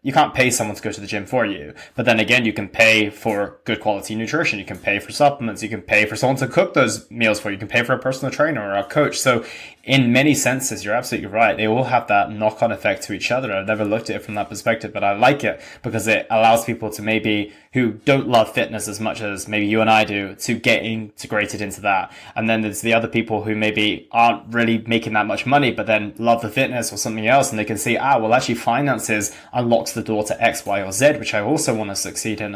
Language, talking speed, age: English, 265 wpm, 20-39